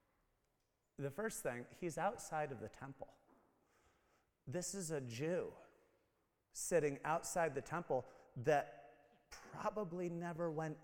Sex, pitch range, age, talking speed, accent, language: male, 125-185 Hz, 40-59, 110 wpm, American, English